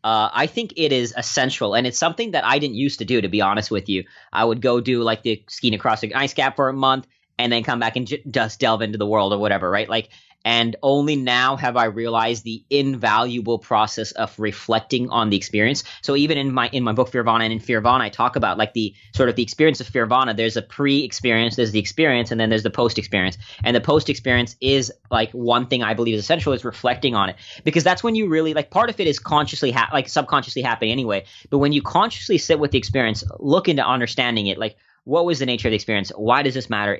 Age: 20-39